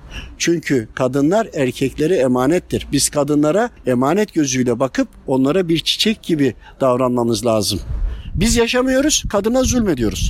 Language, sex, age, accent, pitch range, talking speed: Turkish, male, 60-79, native, 145-210 Hz, 110 wpm